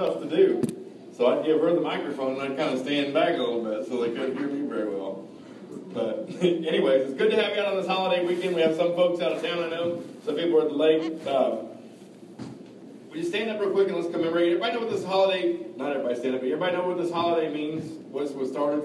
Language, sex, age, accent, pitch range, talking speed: English, male, 40-59, American, 130-165 Hz, 255 wpm